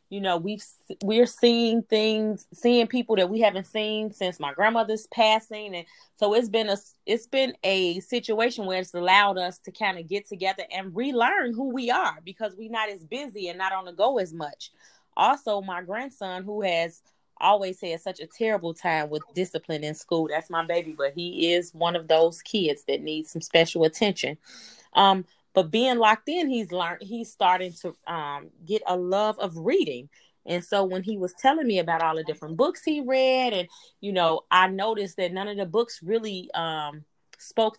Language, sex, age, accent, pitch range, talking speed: English, female, 30-49, American, 170-220 Hz, 195 wpm